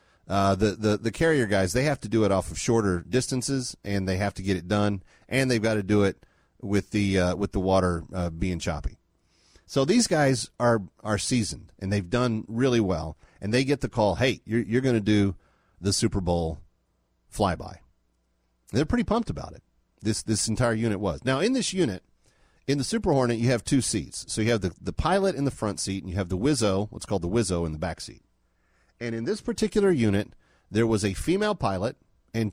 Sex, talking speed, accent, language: male, 220 wpm, American, English